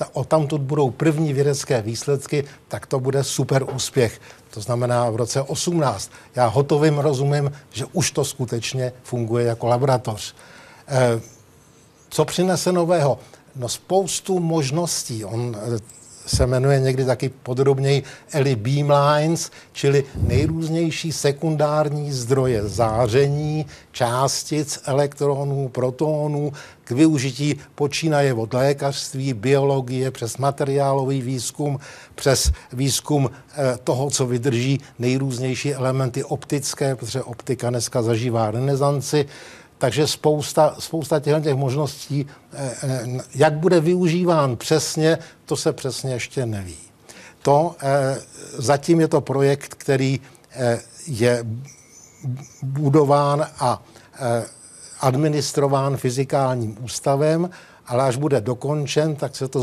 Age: 60-79